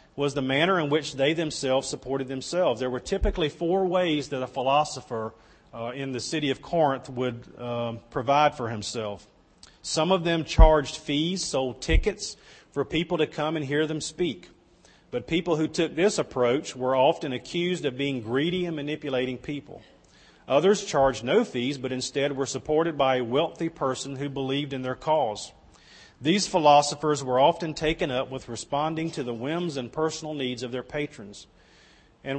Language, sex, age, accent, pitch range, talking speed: English, male, 40-59, American, 125-155 Hz, 170 wpm